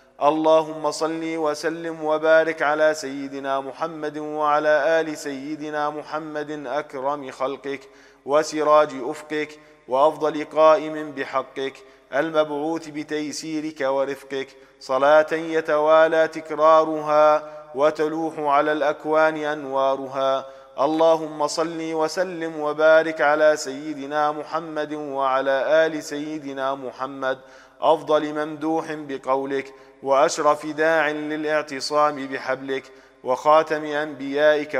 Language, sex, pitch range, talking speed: English, male, 135-155 Hz, 85 wpm